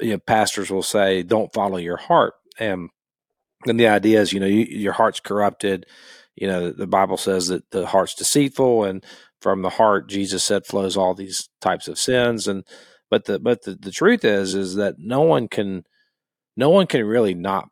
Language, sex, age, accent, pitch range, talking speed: English, male, 40-59, American, 95-120 Hz, 205 wpm